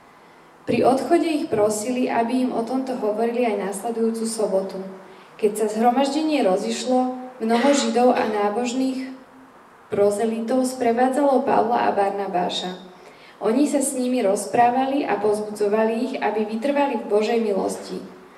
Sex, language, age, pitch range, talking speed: female, Slovak, 20-39, 210-255 Hz, 125 wpm